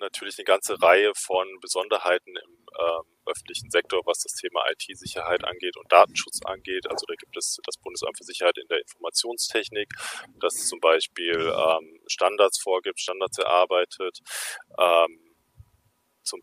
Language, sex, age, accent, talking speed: German, male, 20-39, German, 140 wpm